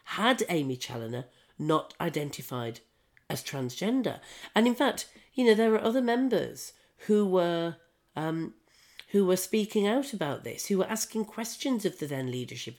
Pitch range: 135-195 Hz